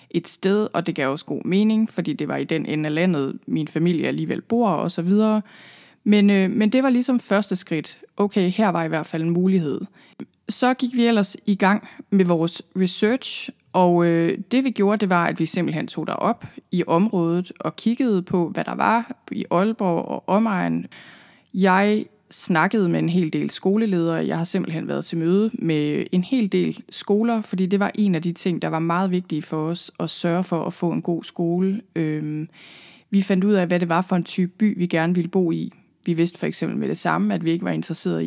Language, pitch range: Danish, 170-205 Hz